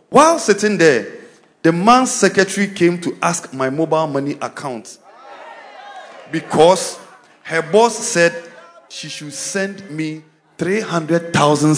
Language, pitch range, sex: English, 160-220 Hz, male